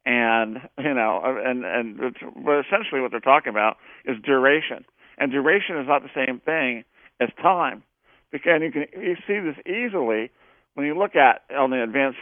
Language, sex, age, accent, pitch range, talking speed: English, male, 50-69, American, 115-155 Hz, 175 wpm